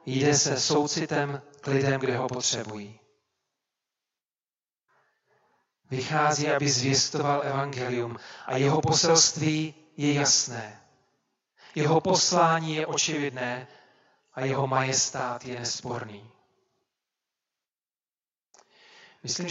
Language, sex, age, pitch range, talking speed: Czech, male, 40-59, 130-155 Hz, 85 wpm